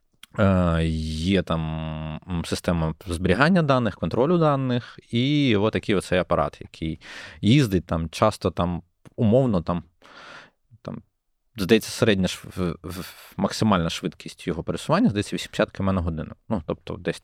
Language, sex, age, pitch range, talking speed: Ukrainian, male, 20-39, 85-110 Hz, 120 wpm